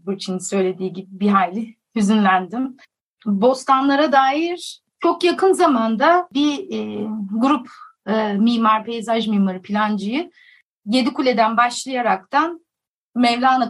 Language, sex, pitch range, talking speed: Turkish, female, 220-295 Hz, 95 wpm